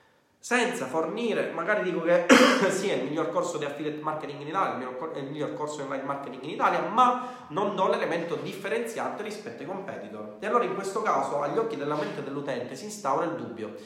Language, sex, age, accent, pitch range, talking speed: Italian, male, 30-49, native, 130-180 Hz, 200 wpm